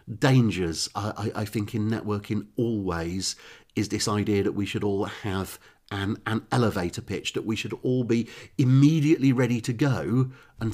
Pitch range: 100-125 Hz